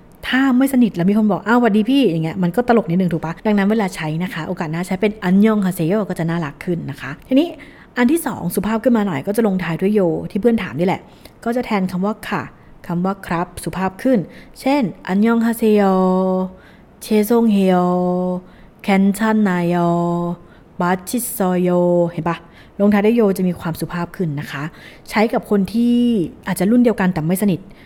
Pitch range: 175-220 Hz